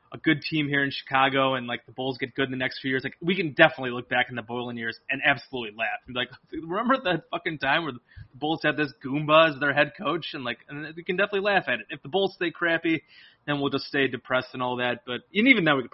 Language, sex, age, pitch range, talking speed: English, male, 20-39, 130-165 Hz, 275 wpm